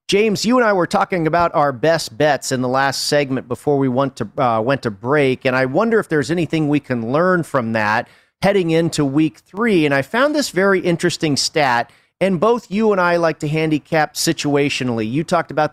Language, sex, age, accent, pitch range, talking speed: English, male, 40-59, American, 135-175 Hz, 215 wpm